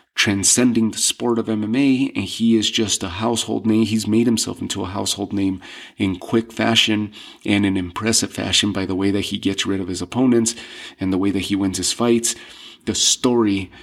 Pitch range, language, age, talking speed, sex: 100-120 Hz, English, 30-49, 200 wpm, male